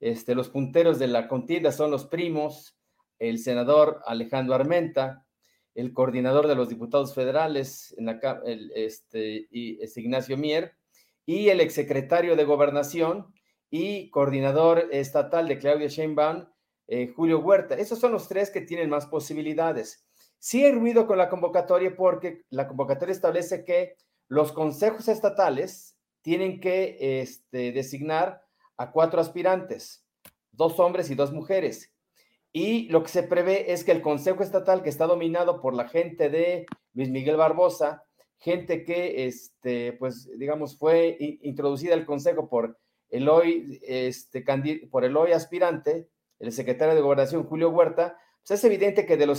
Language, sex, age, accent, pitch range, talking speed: Spanish, male, 40-59, Mexican, 140-180 Hz, 150 wpm